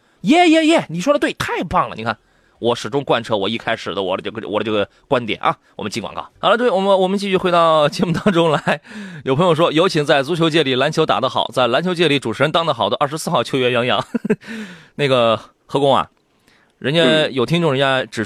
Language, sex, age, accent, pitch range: Chinese, male, 30-49, native, 135-200 Hz